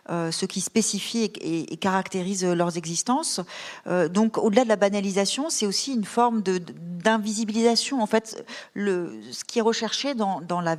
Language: French